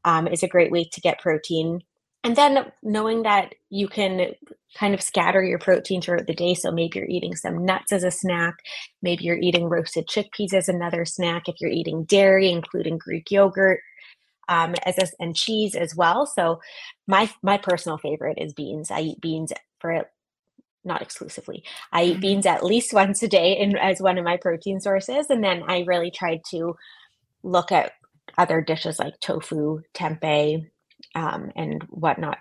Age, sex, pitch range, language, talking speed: 20-39, female, 165-195 Hz, English, 180 wpm